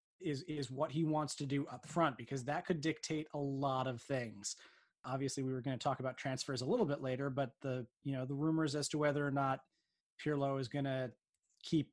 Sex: male